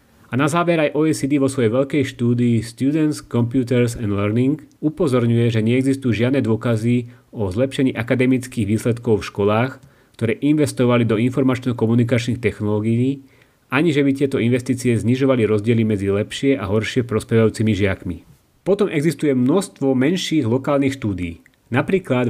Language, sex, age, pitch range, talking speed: Slovak, male, 30-49, 110-135 Hz, 130 wpm